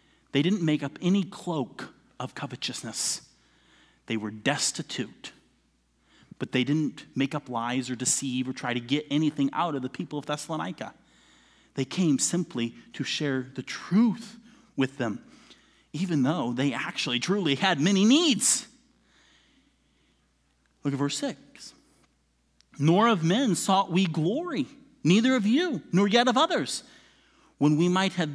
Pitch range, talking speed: 120-175 Hz, 145 wpm